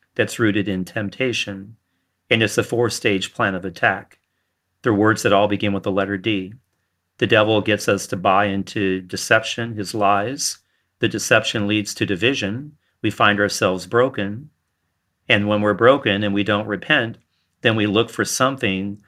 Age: 40-59